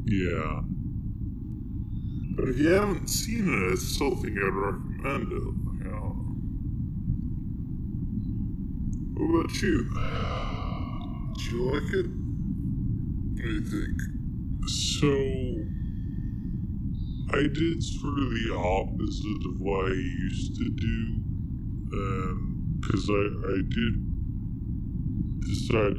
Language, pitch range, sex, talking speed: English, 95-115 Hz, female, 95 wpm